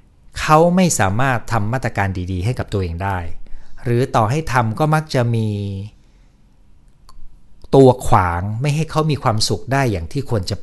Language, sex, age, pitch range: Thai, male, 60-79, 95-125 Hz